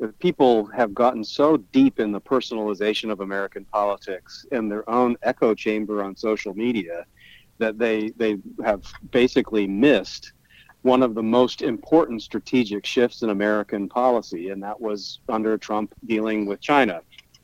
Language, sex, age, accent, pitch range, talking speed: English, male, 40-59, American, 105-125 Hz, 150 wpm